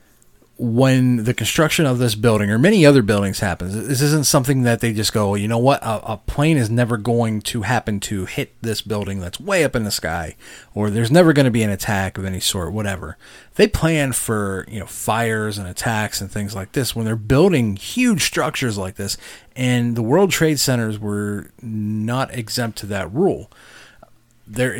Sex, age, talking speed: male, 30-49, 200 wpm